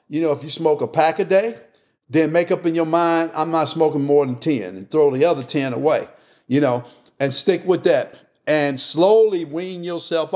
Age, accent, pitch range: 50-69, American, 155-195 Hz